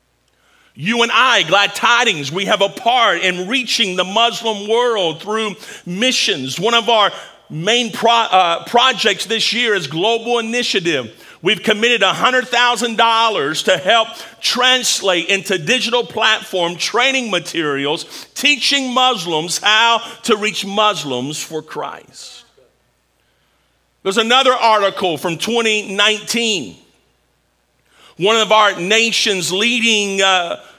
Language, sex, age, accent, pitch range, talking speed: English, male, 50-69, American, 185-235 Hz, 115 wpm